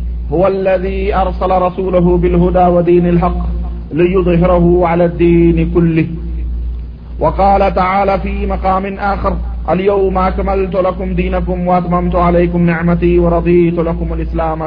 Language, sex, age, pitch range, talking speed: Urdu, male, 40-59, 160-190 Hz, 105 wpm